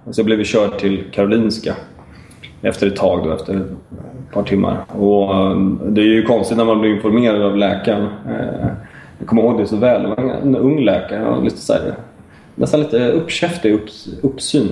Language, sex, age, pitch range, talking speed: English, male, 20-39, 95-115 Hz, 170 wpm